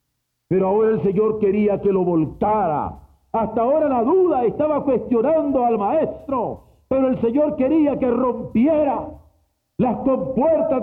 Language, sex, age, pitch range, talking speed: Spanish, male, 50-69, 160-240 Hz, 135 wpm